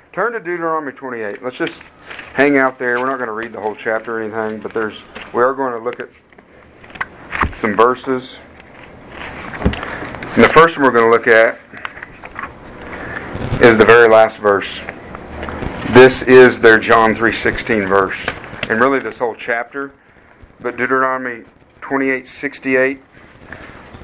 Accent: American